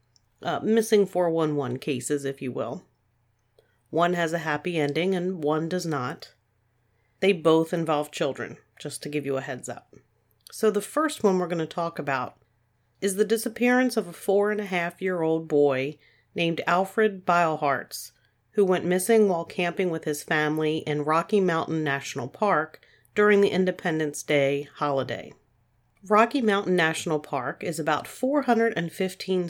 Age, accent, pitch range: 40-59, American, 140-195 Hz